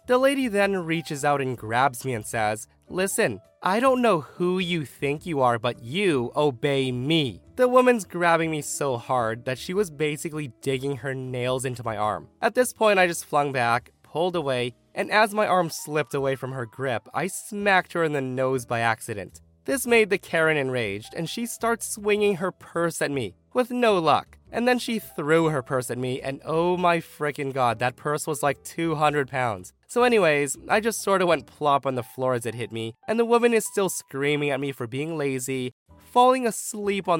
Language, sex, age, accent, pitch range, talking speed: English, male, 20-39, American, 130-190 Hz, 210 wpm